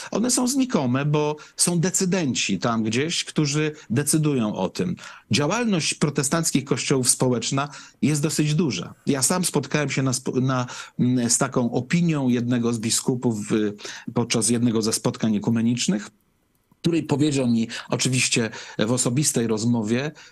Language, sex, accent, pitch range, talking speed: Polish, male, native, 115-155 Hz, 120 wpm